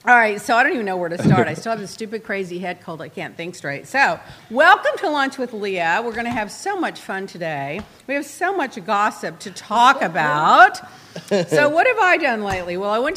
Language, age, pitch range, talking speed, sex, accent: English, 50-69, 170-235 Hz, 240 wpm, female, American